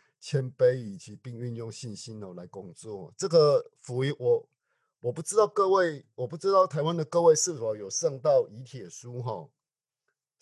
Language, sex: Chinese, male